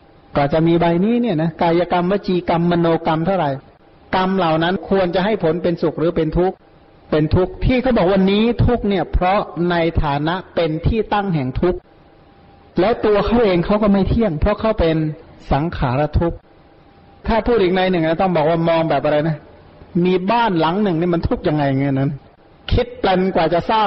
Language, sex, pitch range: Thai, male, 160-210 Hz